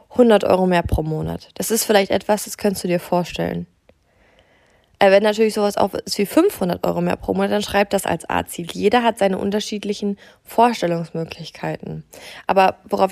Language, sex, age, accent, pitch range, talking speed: German, female, 20-39, German, 185-225 Hz, 170 wpm